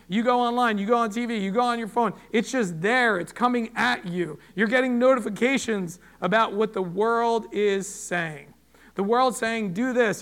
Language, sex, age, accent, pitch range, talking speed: English, male, 40-59, American, 190-245 Hz, 195 wpm